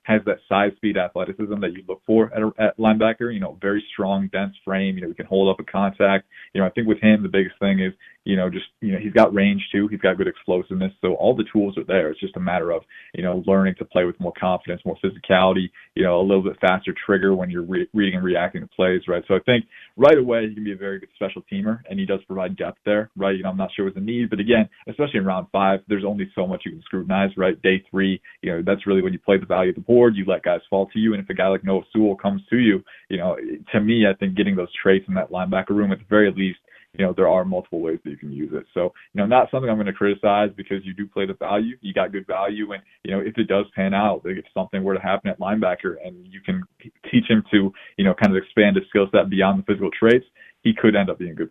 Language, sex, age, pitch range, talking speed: English, male, 20-39, 95-105 Hz, 285 wpm